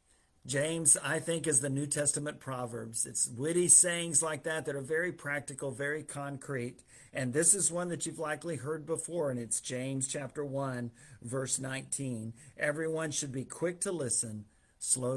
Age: 50-69